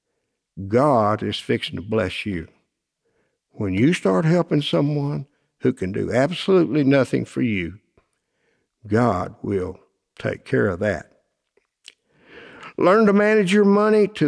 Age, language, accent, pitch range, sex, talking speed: 60-79, English, American, 120-165 Hz, male, 125 wpm